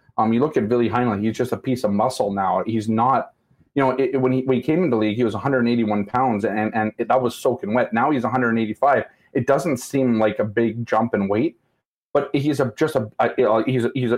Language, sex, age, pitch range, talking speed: English, male, 30-49, 115-145 Hz, 250 wpm